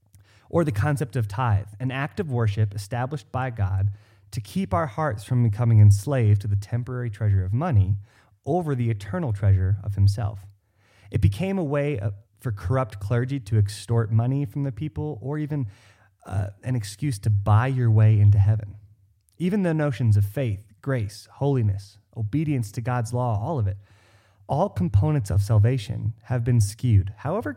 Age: 30-49